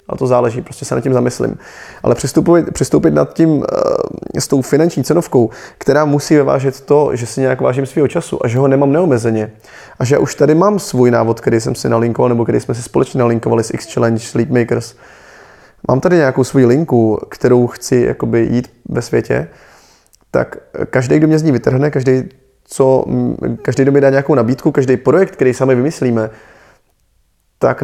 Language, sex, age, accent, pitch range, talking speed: Czech, male, 20-39, native, 120-140 Hz, 170 wpm